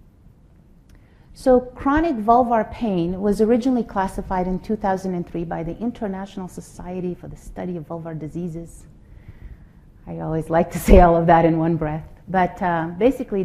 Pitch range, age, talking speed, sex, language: 170-210 Hz, 30-49, 145 wpm, female, English